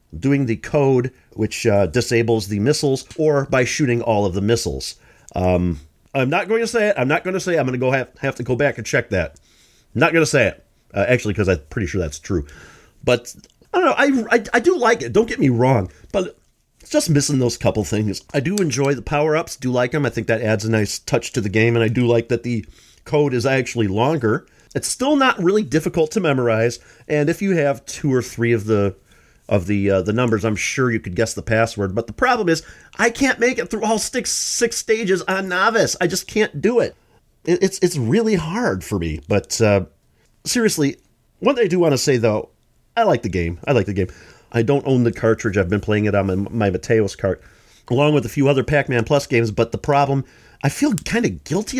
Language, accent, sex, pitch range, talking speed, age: English, American, male, 105-150 Hz, 240 wpm, 40-59